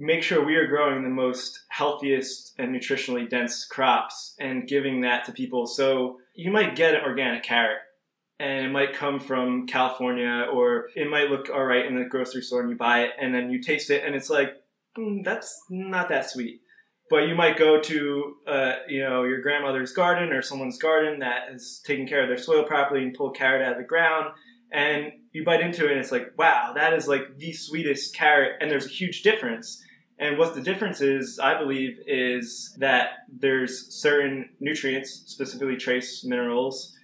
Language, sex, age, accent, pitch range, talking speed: English, male, 20-39, American, 125-155 Hz, 200 wpm